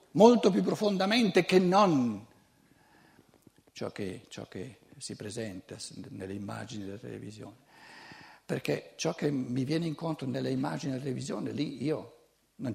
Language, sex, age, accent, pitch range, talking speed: Italian, male, 60-79, native, 110-170 Hz, 130 wpm